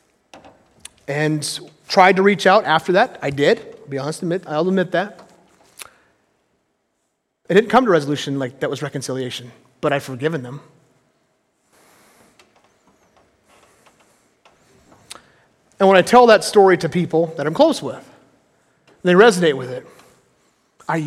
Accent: American